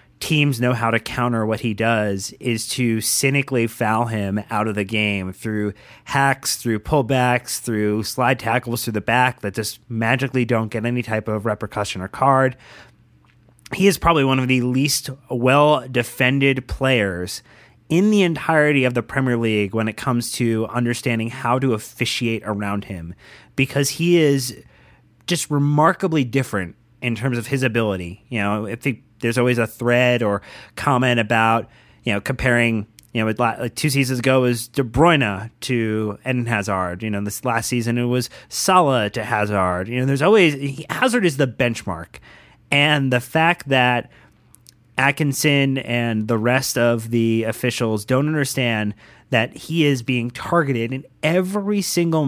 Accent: American